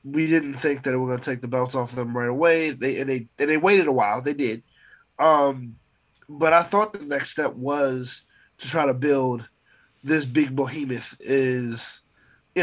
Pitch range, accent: 130-160 Hz, American